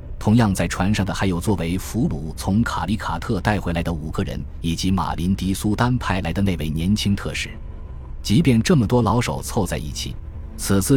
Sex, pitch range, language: male, 80-105 Hz, Chinese